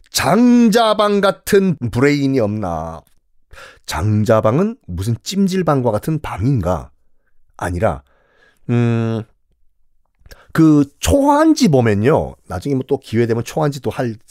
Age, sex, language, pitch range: 30-49, male, Korean, 110-180 Hz